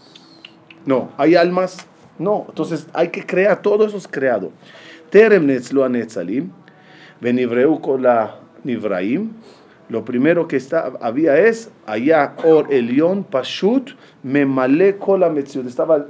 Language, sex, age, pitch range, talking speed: Spanish, male, 40-59, 135-195 Hz, 95 wpm